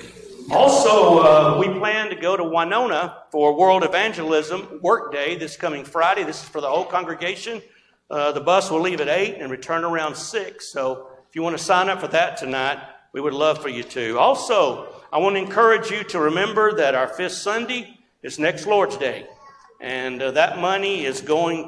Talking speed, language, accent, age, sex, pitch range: 195 wpm, English, American, 60-79, male, 145-195 Hz